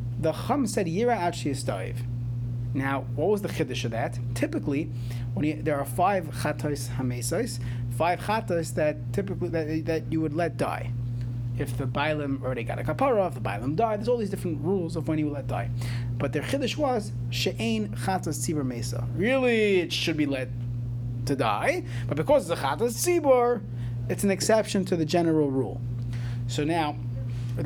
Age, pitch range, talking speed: 30-49, 120-165 Hz, 180 wpm